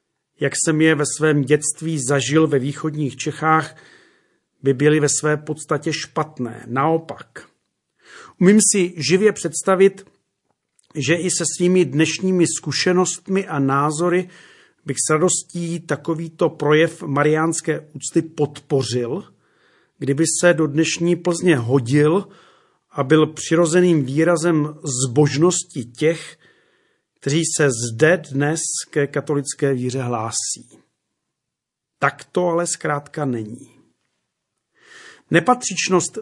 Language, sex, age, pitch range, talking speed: Czech, male, 40-59, 145-175 Hz, 105 wpm